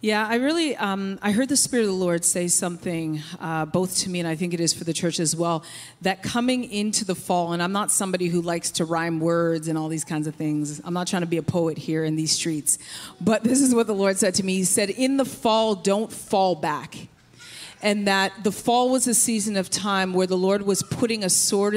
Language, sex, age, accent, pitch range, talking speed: English, female, 40-59, American, 180-220 Hz, 250 wpm